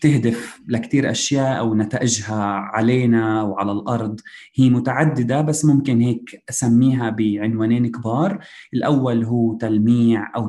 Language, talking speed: Arabic, 115 wpm